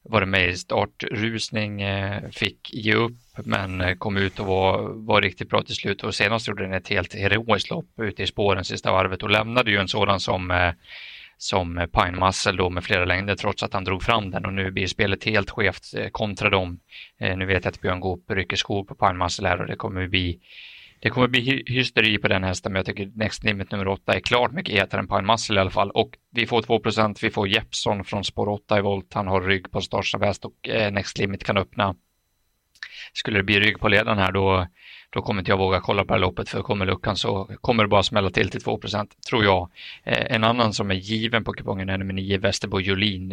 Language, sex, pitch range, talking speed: Swedish, male, 95-110 Hz, 220 wpm